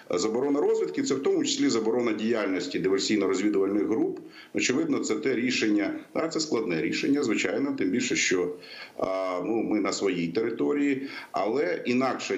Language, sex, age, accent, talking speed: Ukrainian, male, 50-69, native, 135 wpm